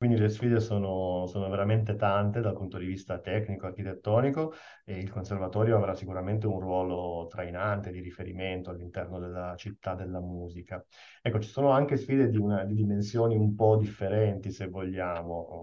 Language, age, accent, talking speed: Italian, 30-49, native, 155 wpm